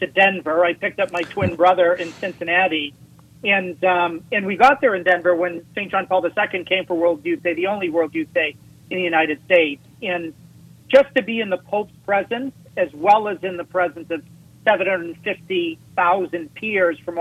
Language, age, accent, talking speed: English, 40-59, American, 190 wpm